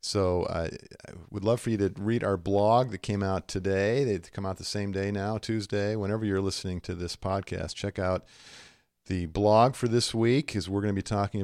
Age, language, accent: 50-69, English, American